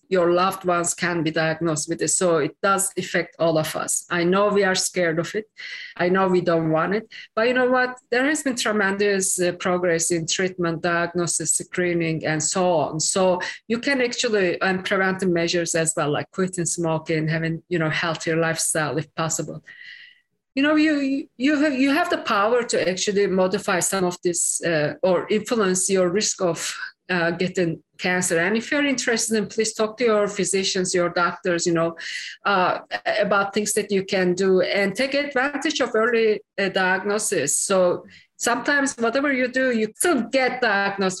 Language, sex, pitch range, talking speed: English, female, 175-225 Hz, 180 wpm